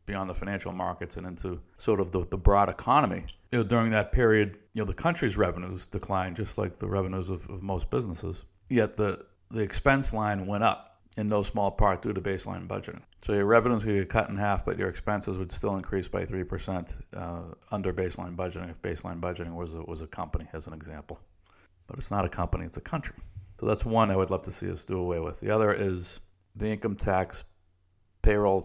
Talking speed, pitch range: 220 wpm, 90-105 Hz